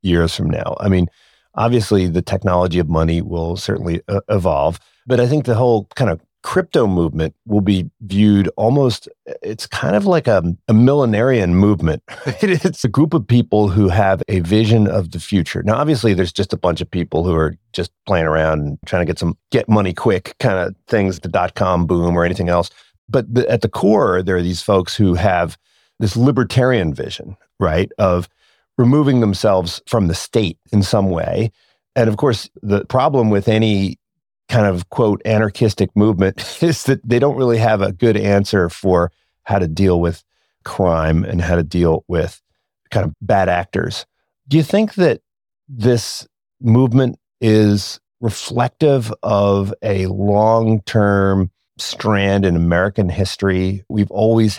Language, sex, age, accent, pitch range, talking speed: English, male, 40-59, American, 90-115 Hz, 165 wpm